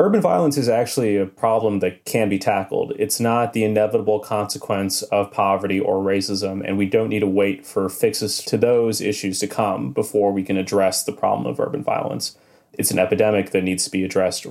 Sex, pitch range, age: male, 100-115 Hz, 20-39